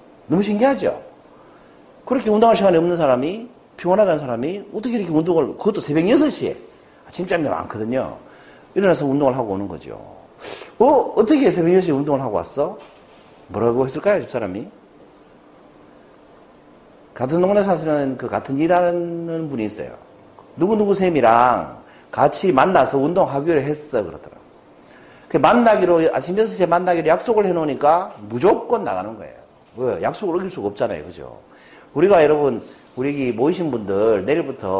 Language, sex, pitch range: Korean, male, 140-205 Hz